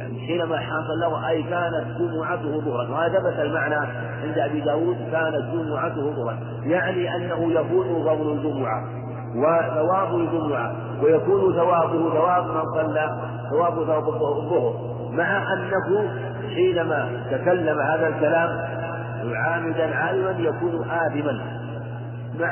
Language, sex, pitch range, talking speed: Arabic, male, 130-155 Hz, 115 wpm